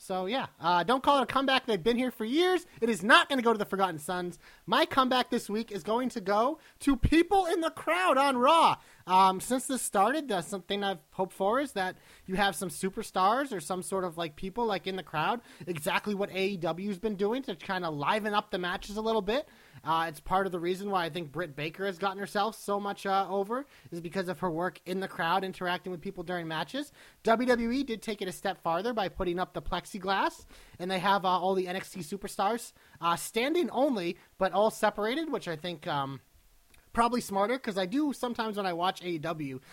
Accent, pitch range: American, 175-225 Hz